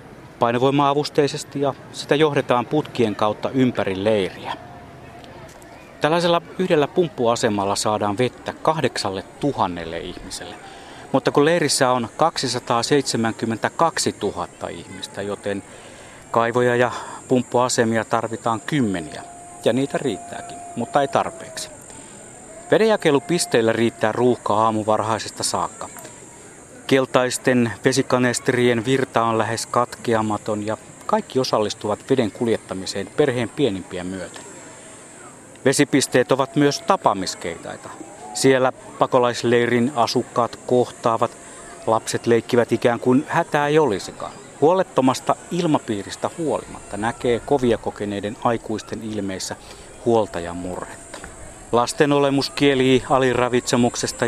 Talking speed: 95 wpm